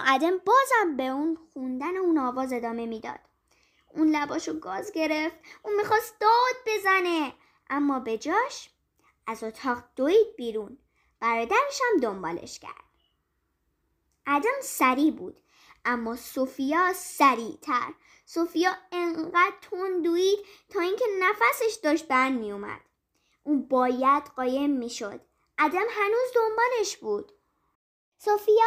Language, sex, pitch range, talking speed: Persian, male, 270-395 Hz, 110 wpm